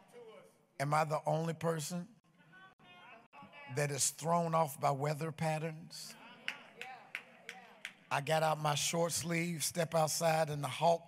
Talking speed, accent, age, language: 125 wpm, American, 50-69, English